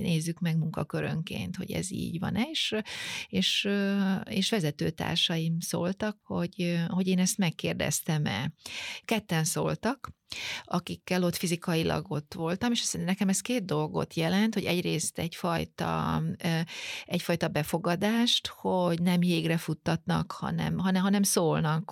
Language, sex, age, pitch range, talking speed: Hungarian, female, 30-49, 160-195 Hz, 120 wpm